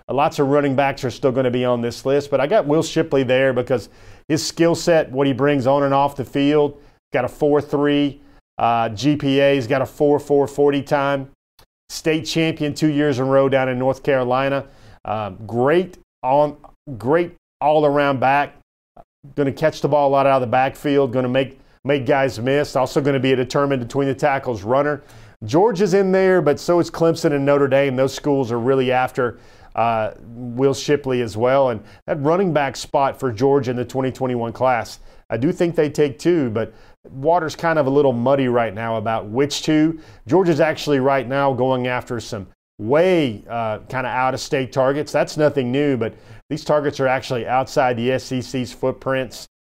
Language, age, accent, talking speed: English, 40-59, American, 195 wpm